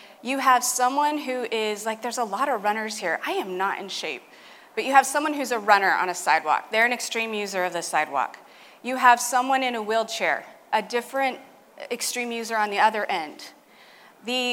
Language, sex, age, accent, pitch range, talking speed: English, female, 30-49, American, 205-270 Hz, 200 wpm